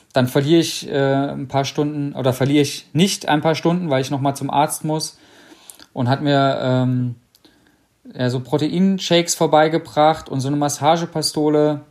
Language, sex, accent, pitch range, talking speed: German, male, German, 125-150 Hz, 155 wpm